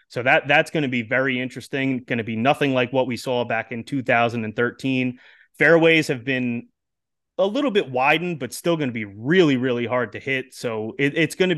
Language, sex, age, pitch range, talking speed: English, male, 30-49, 125-145 Hz, 205 wpm